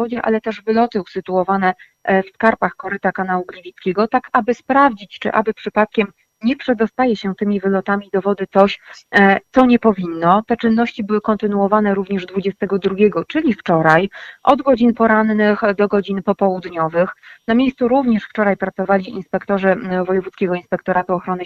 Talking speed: 135 wpm